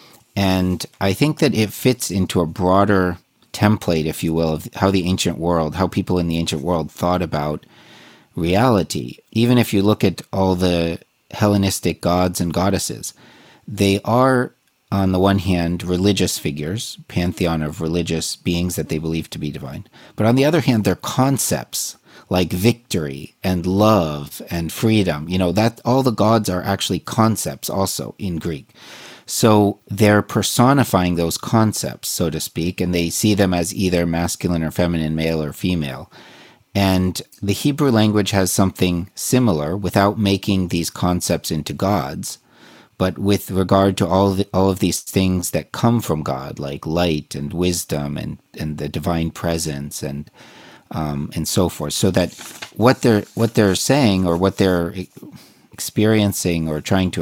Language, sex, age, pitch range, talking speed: English, male, 40-59, 85-105 Hz, 165 wpm